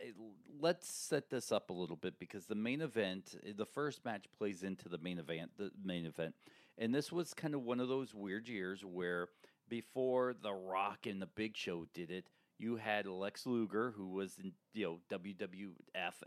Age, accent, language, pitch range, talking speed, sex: 40-59, American, English, 90-120 Hz, 190 wpm, male